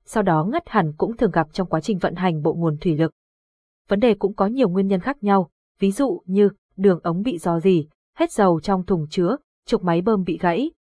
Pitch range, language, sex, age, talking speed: 180-230 Hz, Vietnamese, female, 20-39, 240 wpm